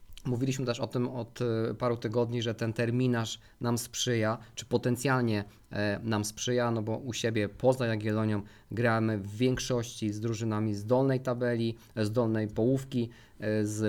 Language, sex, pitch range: Polish, male, 115-135 Hz